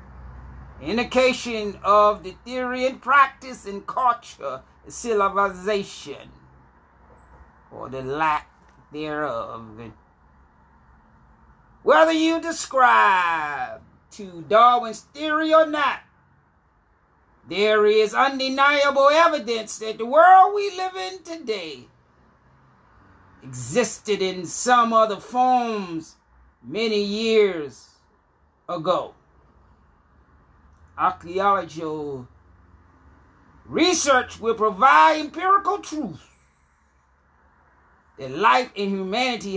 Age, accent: 40-59, American